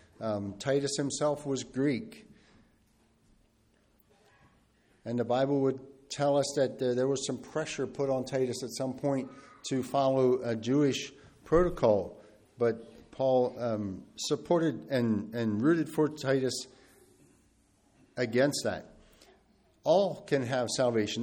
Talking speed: 120 wpm